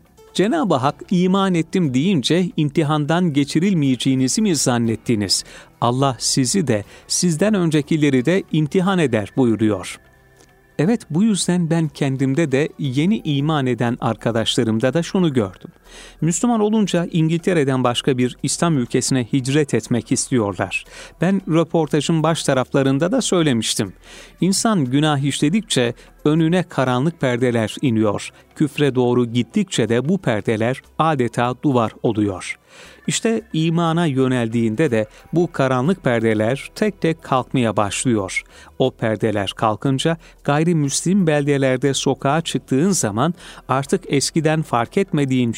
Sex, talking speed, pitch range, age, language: male, 115 wpm, 120-165 Hz, 40-59, Turkish